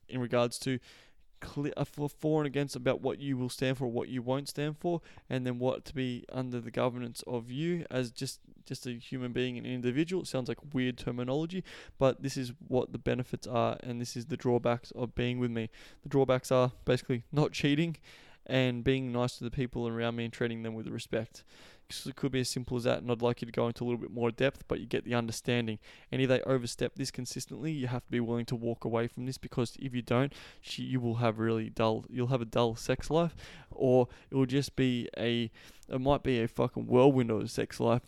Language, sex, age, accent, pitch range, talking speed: English, male, 20-39, Australian, 115-130 Hz, 235 wpm